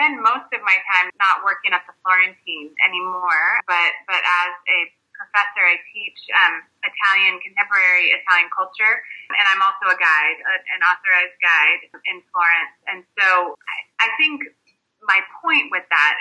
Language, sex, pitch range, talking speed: Italian, female, 180-215 Hz, 160 wpm